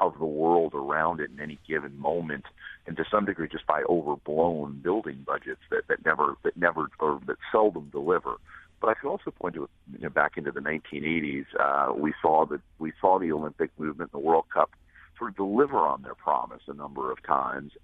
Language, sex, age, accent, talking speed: English, male, 50-69, American, 210 wpm